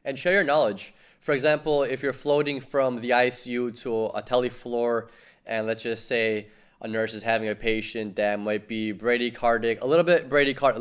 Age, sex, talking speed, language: 20-39, male, 190 wpm, English